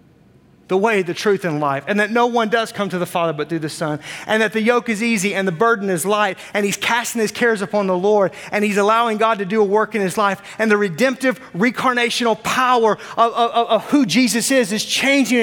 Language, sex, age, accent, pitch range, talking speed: English, male, 30-49, American, 195-255 Hz, 240 wpm